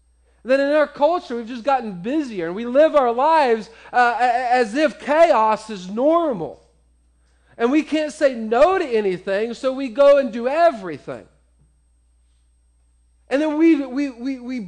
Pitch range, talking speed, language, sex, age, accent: 210-290 Hz, 155 wpm, English, male, 40-59, American